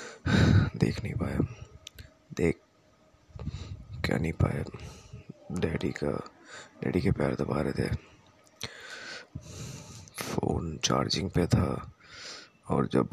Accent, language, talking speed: native, Hindi, 95 wpm